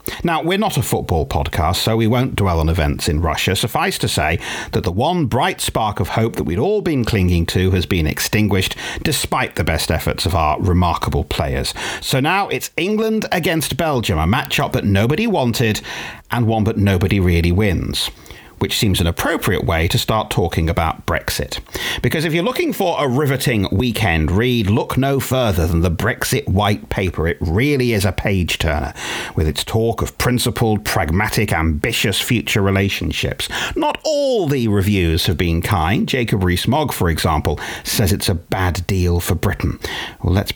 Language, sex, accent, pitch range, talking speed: English, male, British, 90-120 Hz, 180 wpm